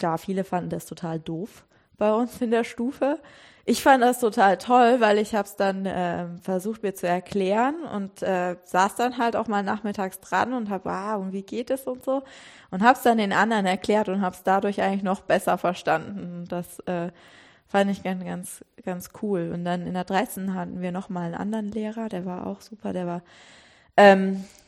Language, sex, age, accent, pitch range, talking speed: German, female, 20-39, German, 185-225 Hz, 205 wpm